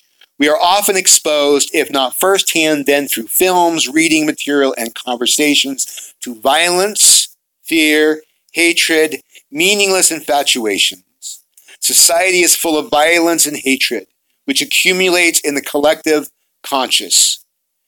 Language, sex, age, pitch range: English, male, 50-69, 125-185 Hz